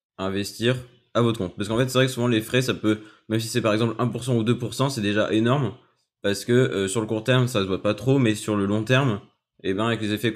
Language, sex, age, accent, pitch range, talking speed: French, male, 20-39, French, 100-125 Hz, 285 wpm